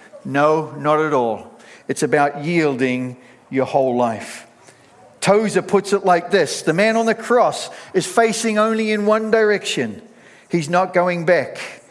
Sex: male